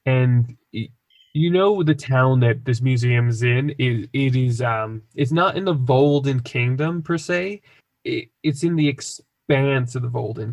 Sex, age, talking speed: male, 10-29, 165 wpm